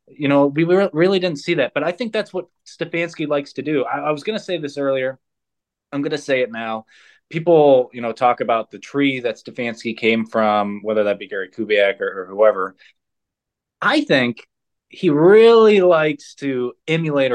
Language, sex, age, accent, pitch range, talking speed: English, male, 20-39, American, 115-160 Hz, 195 wpm